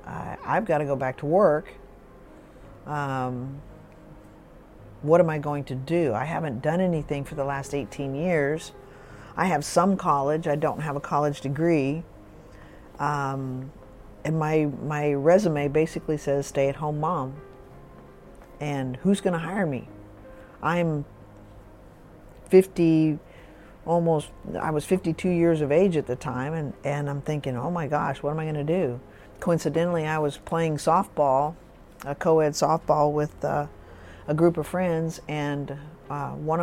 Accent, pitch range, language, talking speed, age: American, 135-160 Hz, English, 145 wpm, 50-69